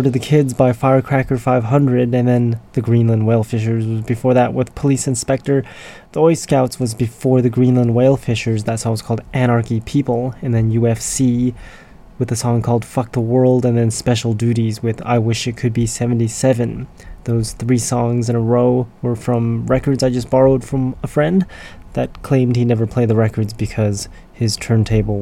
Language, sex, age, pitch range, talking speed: English, male, 20-39, 110-125 Hz, 185 wpm